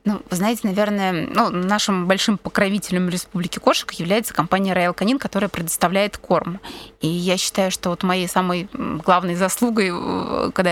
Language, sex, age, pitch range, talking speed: Russian, female, 20-39, 180-220 Hz, 150 wpm